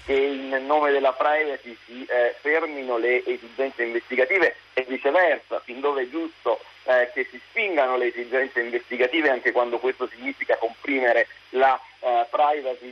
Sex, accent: male, native